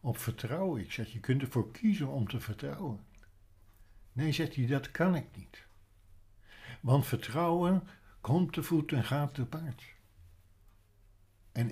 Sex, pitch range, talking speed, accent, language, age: male, 95-130 Hz, 145 wpm, Dutch, Dutch, 60-79